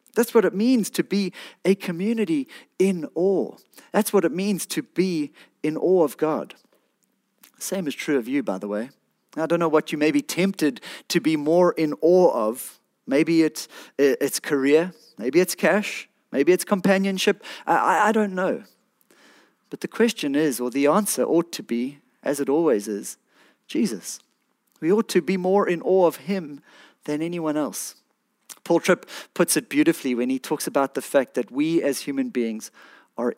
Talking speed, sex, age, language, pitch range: 180 wpm, male, 40-59, English, 145-195 Hz